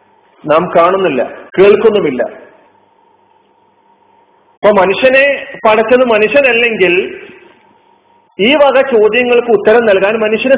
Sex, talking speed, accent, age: male, 70 wpm, native, 40-59